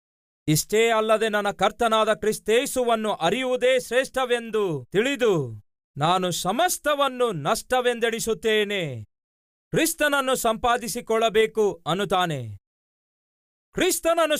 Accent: native